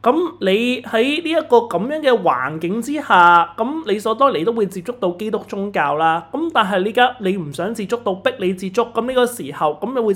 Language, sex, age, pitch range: Chinese, male, 30-49, 170-245 Hz